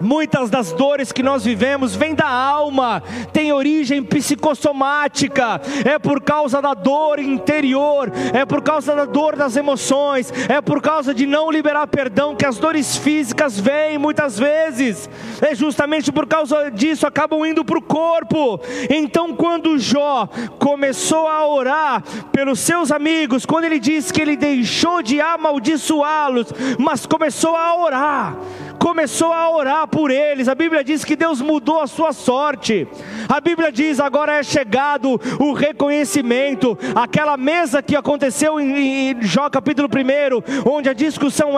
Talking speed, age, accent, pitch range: 150 wpm, 30-49, Brazilian, 265-305 Hz